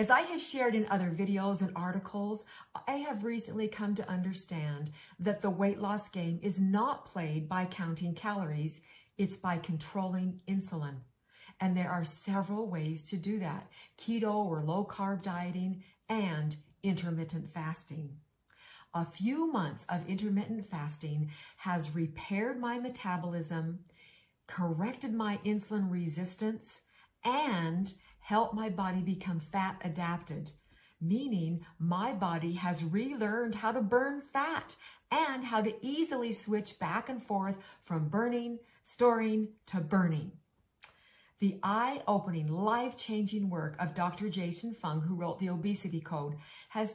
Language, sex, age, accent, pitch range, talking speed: English, female, 50-69, American, 170-215 Hz, 130 wpm